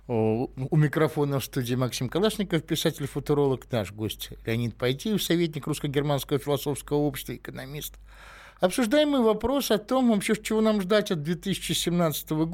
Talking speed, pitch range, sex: 130 wpm, 145-195 Hz, male